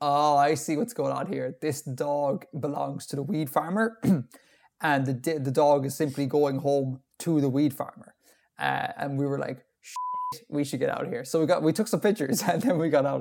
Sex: male